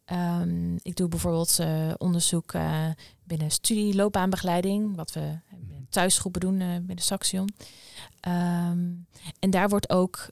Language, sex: Dutch, female